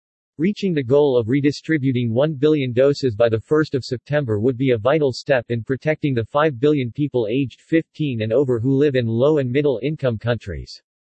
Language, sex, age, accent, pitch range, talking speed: English, male, 50-69, American, 115-150 Hz, 180 wpm